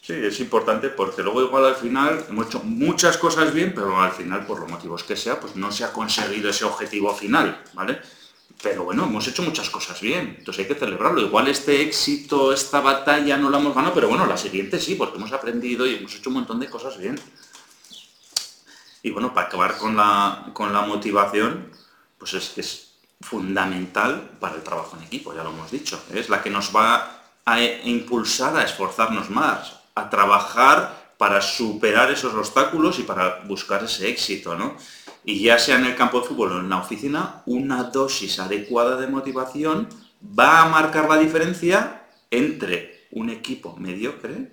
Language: Spanish